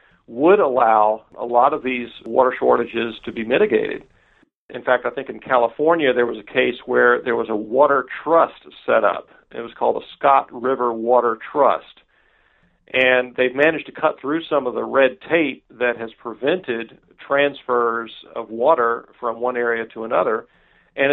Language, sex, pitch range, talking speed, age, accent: English, male, 120-135 Hz, 170 wpm, 50-69, American